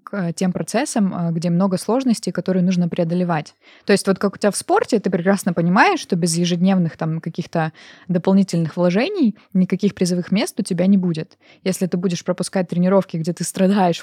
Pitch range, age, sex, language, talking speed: 175-200 Hz, 20-39, female, Russian, 180 wpm